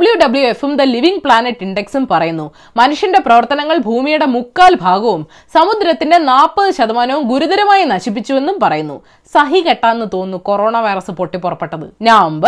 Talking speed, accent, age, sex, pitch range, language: 115 wpm, native, 20-39, female, 205-310 Hz, Malayalam